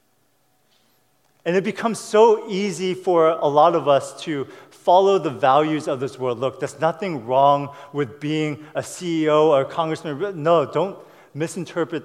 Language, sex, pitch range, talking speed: English, male, 145-185 Hz, 155 wpm